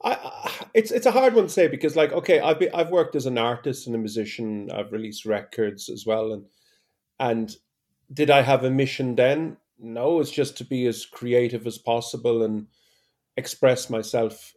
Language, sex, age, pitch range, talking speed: English, male, 30-49, 115-140 Hz, 190 wpm